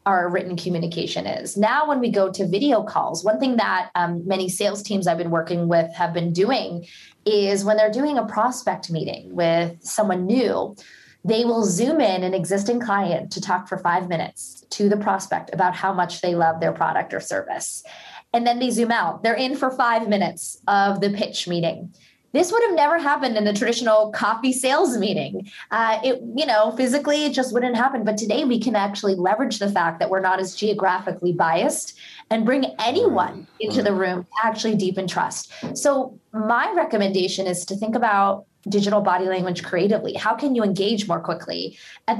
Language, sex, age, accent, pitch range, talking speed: English, female, 20-39, American, 185-240 Hz, 190 wpm